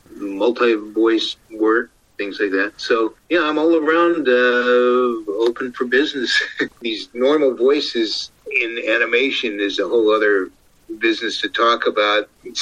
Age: 50-69